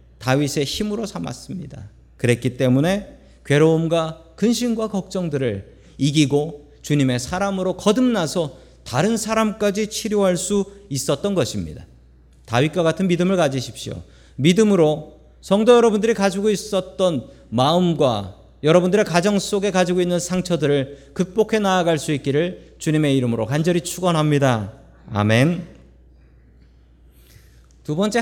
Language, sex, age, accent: Korean, male, 40-59, native